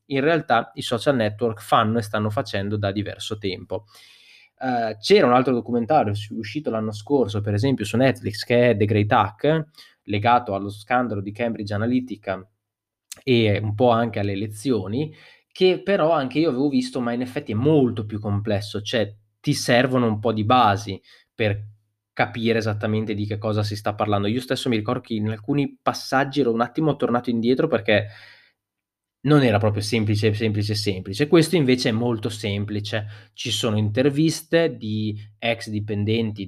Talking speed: 165 wpm